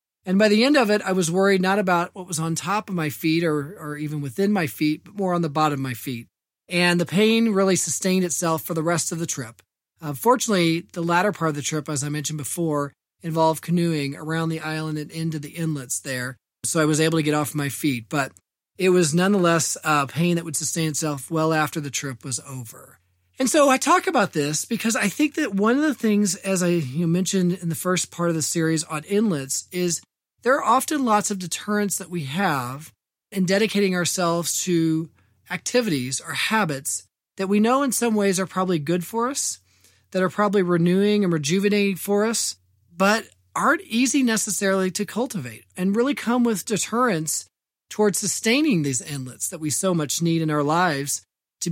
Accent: American